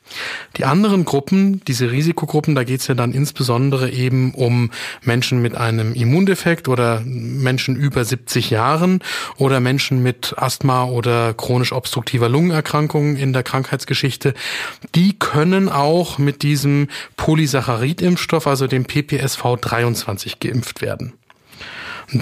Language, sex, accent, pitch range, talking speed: German, male, German, 125-160 Hz, 120 wpm